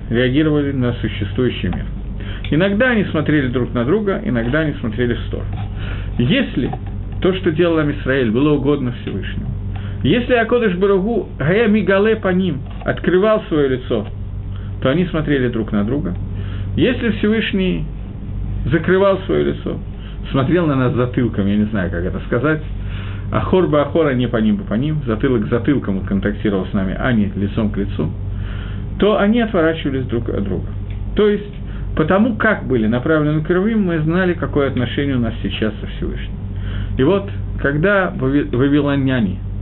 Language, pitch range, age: Russian, 100-160 Hz, 50-69